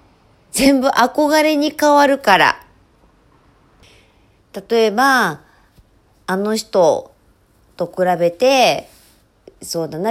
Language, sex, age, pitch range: Japanese, female, 40-59, 150-225 Hz